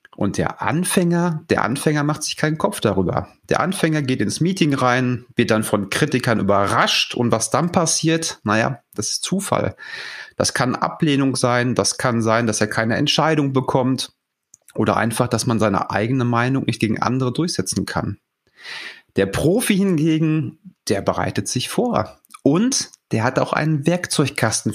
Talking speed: 160 wpm